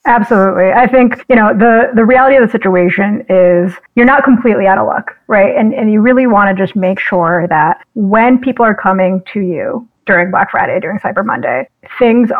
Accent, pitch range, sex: American, 195-250 Hz, female